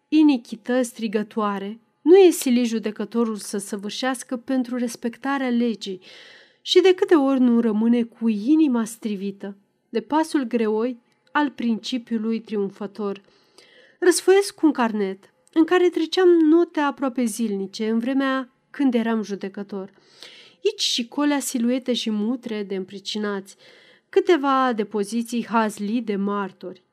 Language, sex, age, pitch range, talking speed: Romanian, female, 30-49, 210-280 Hz, 120 wpm